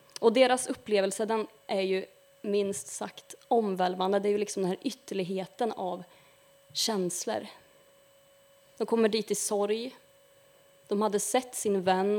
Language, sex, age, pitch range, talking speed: Swedish, female, 20-39, 185-235 Hz, 140 wpm